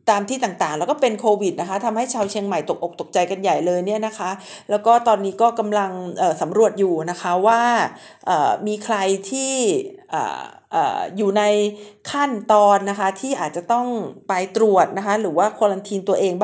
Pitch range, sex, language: 195-255 Hz, female, Thai